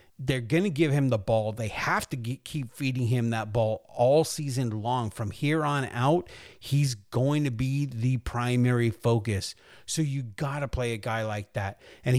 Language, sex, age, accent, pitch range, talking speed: English, male, 40-59, American, 120-150 Hz, 195 wpm